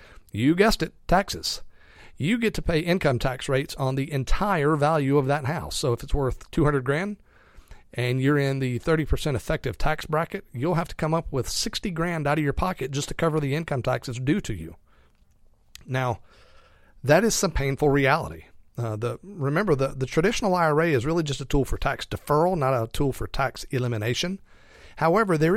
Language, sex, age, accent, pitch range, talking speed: English, male, 40-59, American, 120-160 Hz, 195 wpm